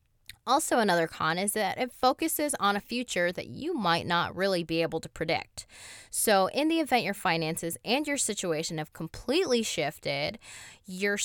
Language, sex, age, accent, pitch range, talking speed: English, female, 20-39, American, 160-205 Hz, 170 wpm